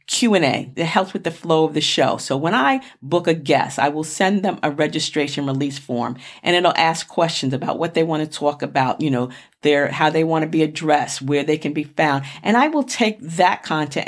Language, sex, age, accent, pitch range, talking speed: English, female, 40-59, American, 145-180 Hz, 230 wpm